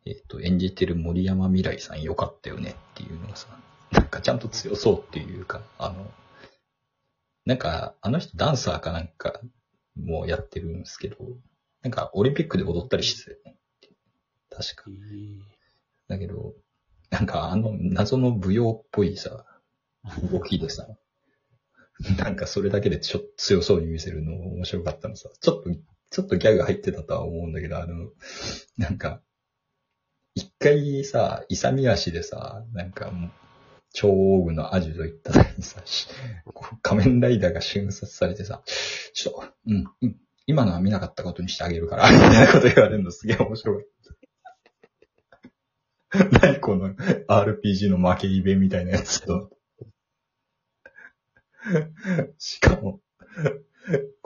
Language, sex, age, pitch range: Japanese, male, 30-49, 90-130 Hz